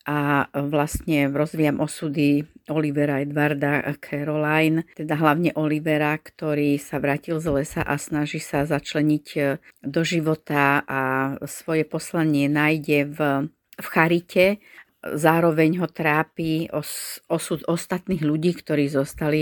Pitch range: 145-165 Hz